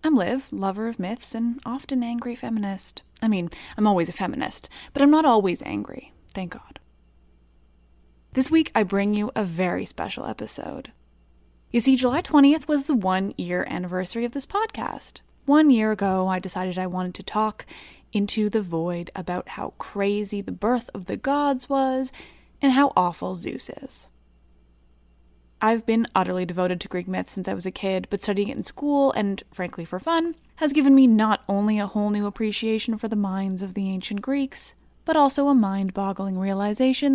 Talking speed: 180 wpm